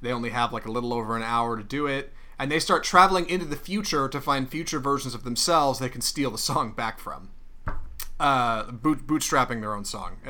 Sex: male